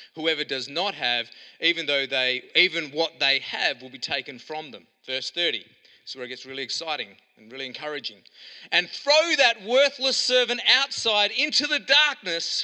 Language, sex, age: English, male, 30-49